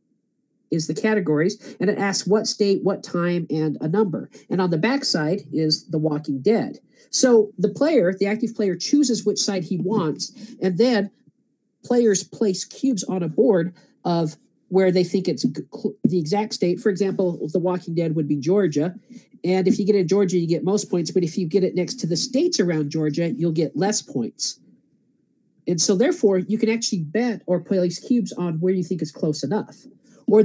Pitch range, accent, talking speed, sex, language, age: 165-215 Hz, American, 200 wpm, male, English, 50-69